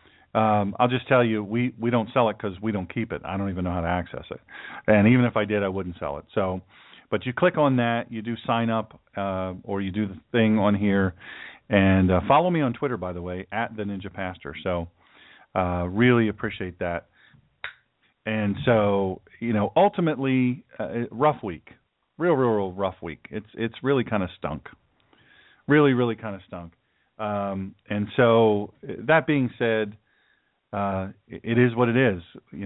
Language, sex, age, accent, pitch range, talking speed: English, male, 40-59, American, 95-120 Hz, 195 wpm